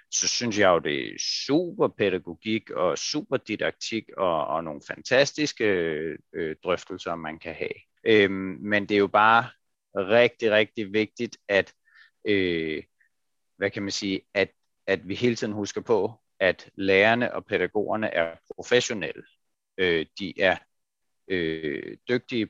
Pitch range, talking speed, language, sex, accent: 95-120 Hz, 115 wpm, Danish, male, native